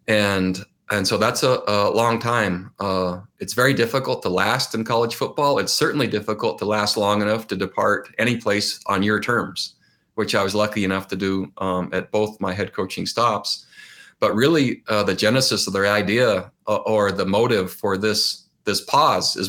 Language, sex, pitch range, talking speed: English, male, 100-115 Hz, 190 wpm